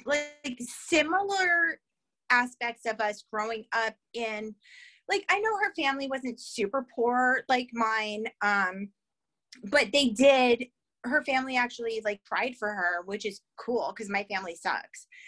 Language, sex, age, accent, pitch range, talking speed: English, female, 30-49, American, 220-315 Hz, 140 wpm